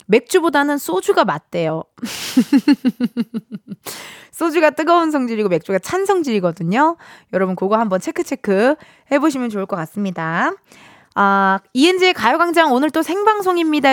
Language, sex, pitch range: Korean, female, 215-320 Hz